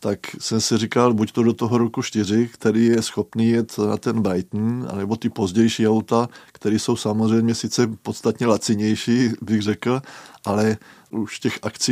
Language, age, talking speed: Czech, 20-39, 165 wpm